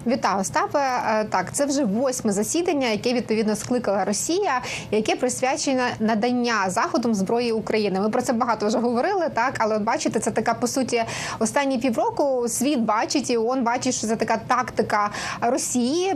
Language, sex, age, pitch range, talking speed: Ukrainian, female, 20-39, 220-260 Hz, 160 wpm